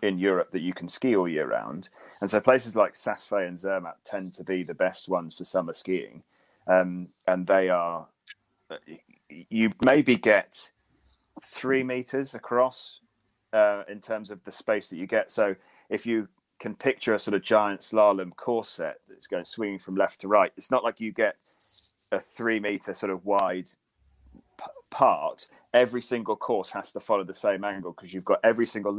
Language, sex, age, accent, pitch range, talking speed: English, male, 30-49, British, 95-115 Hz, 185 wpm